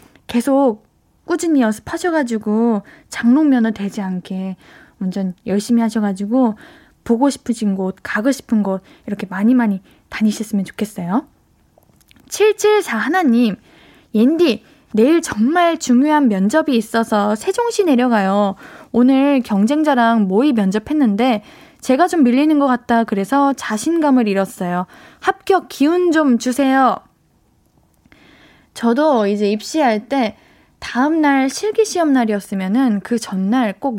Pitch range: 210-295 Hz